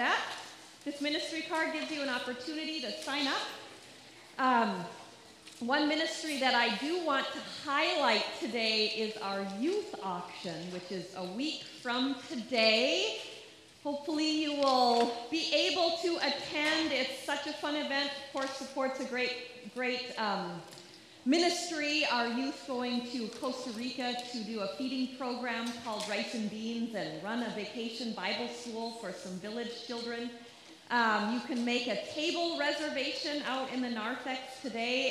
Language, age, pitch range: English, 30-49, 220-280 Hz